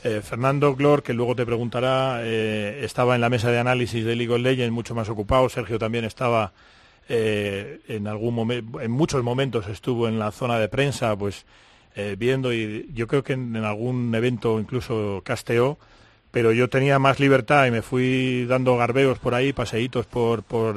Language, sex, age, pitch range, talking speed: Spanish, male, 40-59, 110-135 Hz, 190 wpm